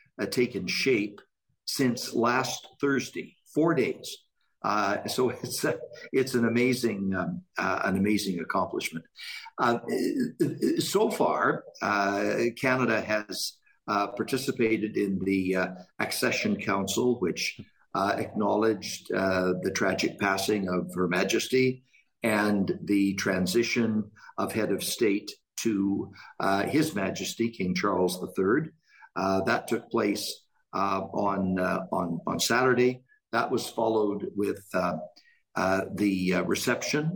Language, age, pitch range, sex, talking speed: English, 60-79, 95-120 Hz, male, 120 wpm